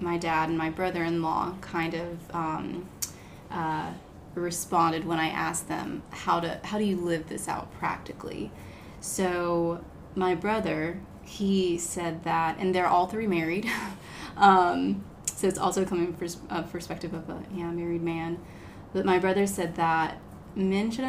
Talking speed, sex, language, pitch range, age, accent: 155 wpm, female, English, 165-180 Hz, 20-39, American